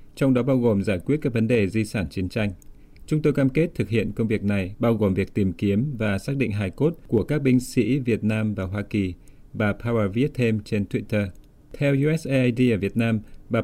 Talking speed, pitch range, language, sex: 235 wpm, 105-125 Hz, Vietnamese, male